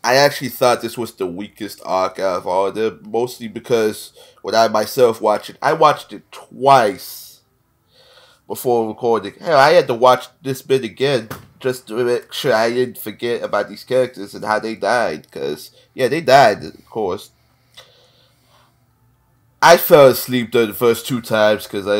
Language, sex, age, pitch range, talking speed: English, male, 20-39, 100-125 Hz, 170 wpm